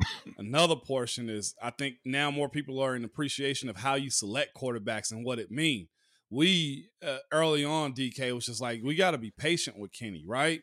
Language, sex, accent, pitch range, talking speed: English, male, American, 135-165 Hz, 205 wpm